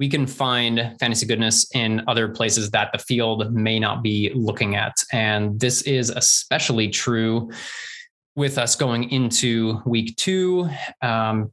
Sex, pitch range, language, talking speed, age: male, 110-130 Hz, English, 145 wpm, 20-39